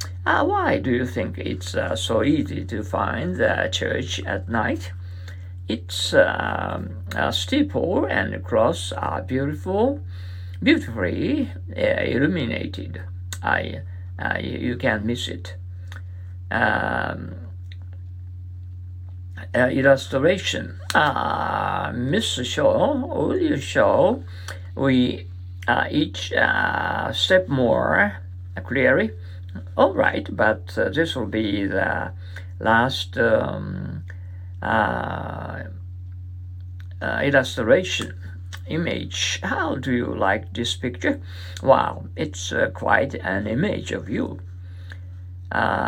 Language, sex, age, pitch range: Japanese, male, 50-69, 90-95 Hz